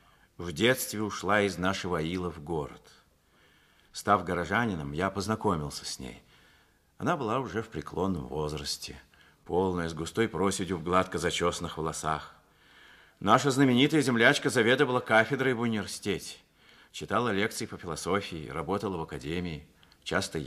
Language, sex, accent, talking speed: Russian, male, native, 125 wpm